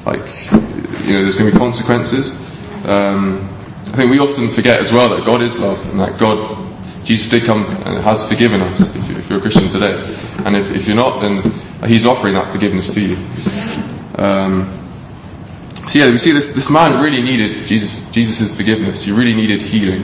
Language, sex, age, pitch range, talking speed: English, male, 20-39, 100-125 Hz, 190 wpm